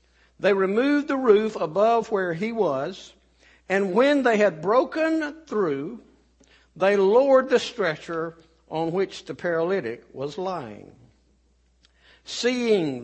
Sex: male